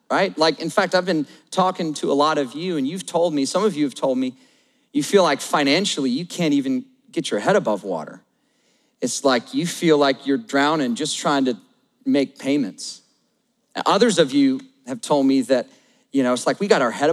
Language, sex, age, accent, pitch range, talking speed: English, male, 40-59, American, 150-225 Hz, 215 wpm